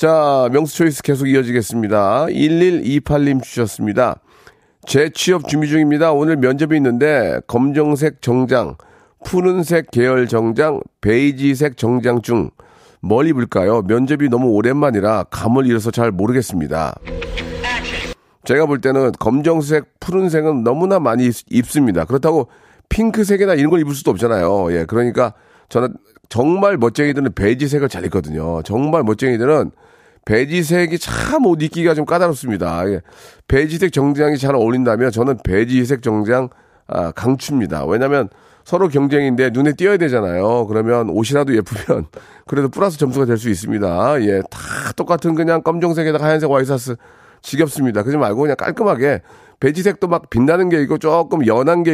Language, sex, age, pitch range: Korean, male, 40-59, 120-160 Hz